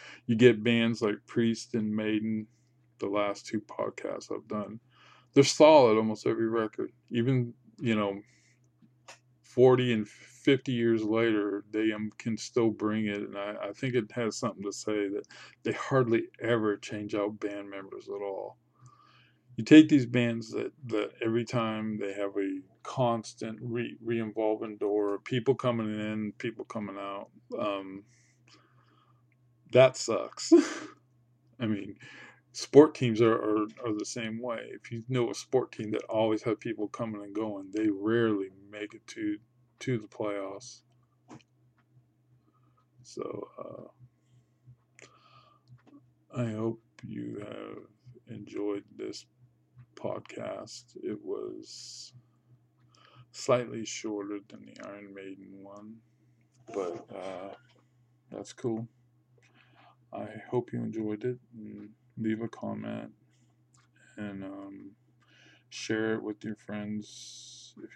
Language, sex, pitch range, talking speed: English, male, 105-125 Hz, 125 wpm